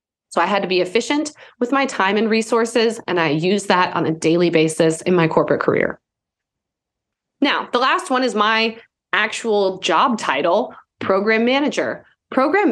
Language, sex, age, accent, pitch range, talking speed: English, female, 20-39, American, 175-240 Hz, 165 wpm